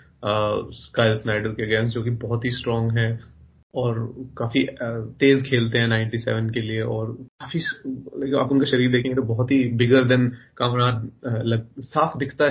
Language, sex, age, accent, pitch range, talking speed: Hindi, male, 30-49, native, 115-130 Hz, 125 wpm